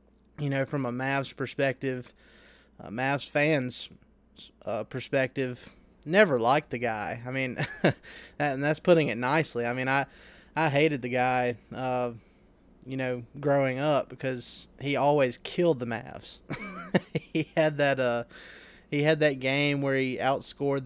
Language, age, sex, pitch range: English, 20-39, male, 125-145 Hz